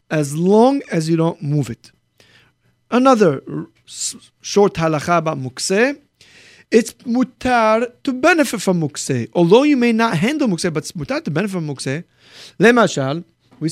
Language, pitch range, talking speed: English, 150-230 Hz, 155 wpm